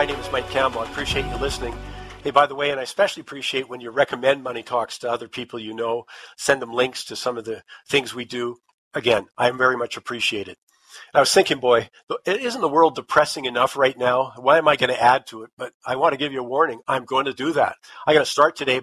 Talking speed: 260 wpm